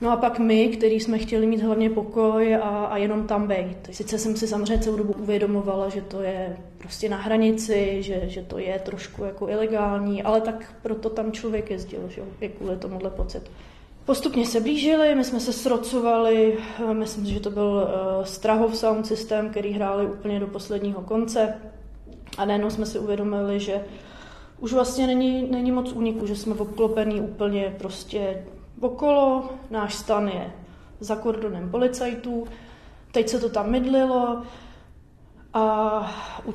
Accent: native